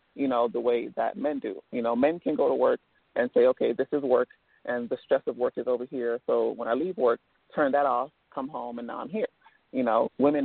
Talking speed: 260 wpm